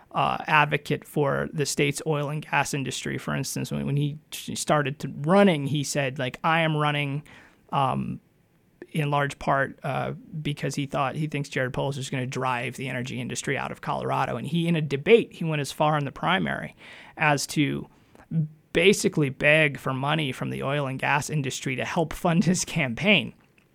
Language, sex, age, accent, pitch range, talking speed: English, male, 20-39, American, 135-170 Hz, 185 wpm